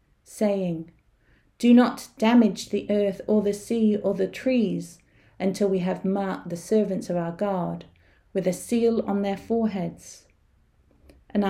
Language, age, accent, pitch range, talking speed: English, 40-59, British, 165-225 Hz, 145 wpm